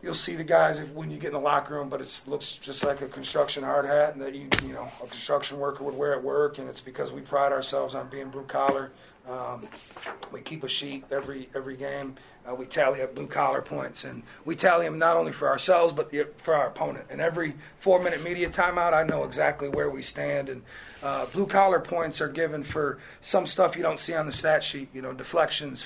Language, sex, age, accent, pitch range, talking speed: English, male, 30-49, American, 140-160 Hz, 215 wpm